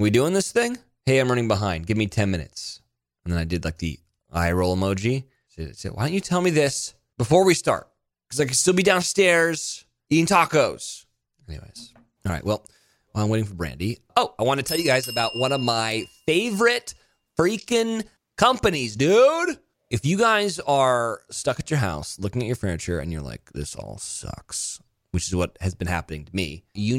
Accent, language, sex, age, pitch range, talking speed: American, English, male, 20-39, 105-150 Hz, 200 wpm